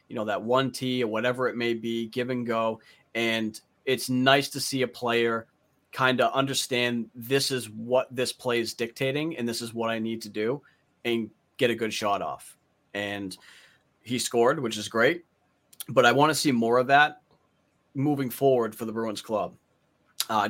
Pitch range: 110-130 Hz